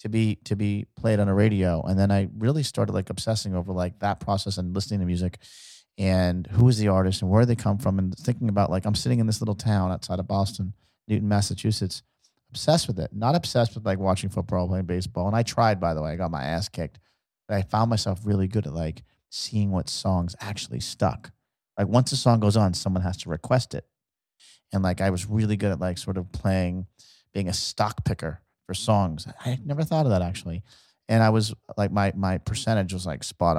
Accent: American